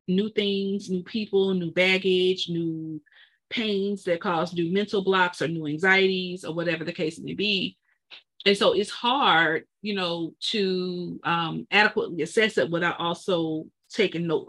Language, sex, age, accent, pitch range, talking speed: English, female, 40-59, American, 175-220 Hz, 155 wpm